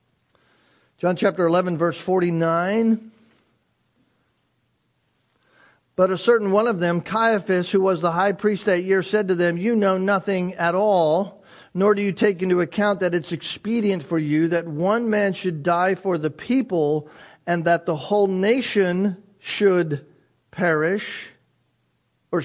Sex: male